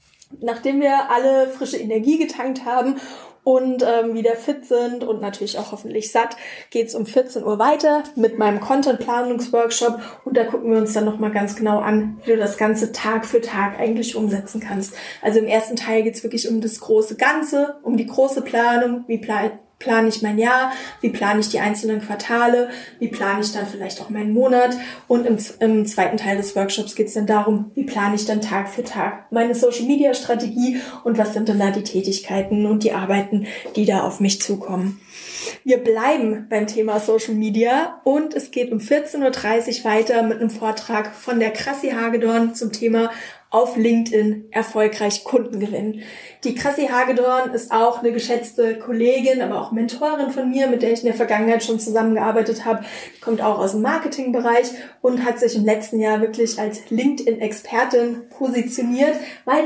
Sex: female